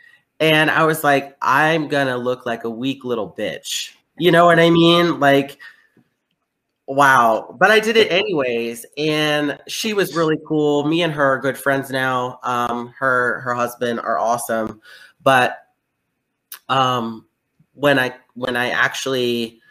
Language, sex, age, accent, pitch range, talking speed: English, male, 30-49, American, 125-160 Hz, 150 wpm